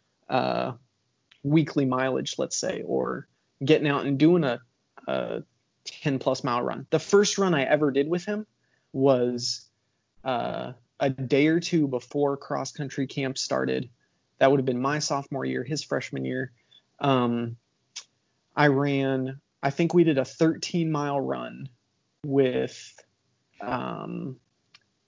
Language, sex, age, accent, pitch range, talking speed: English, male, 20-39, American, 130-155 Hz, 140 wpm